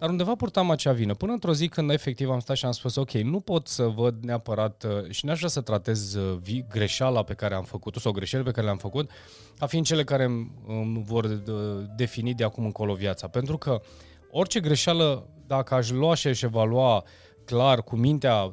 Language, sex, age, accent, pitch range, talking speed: Romanian, male, 30-49, native, 115-165 Hz, 205 wpm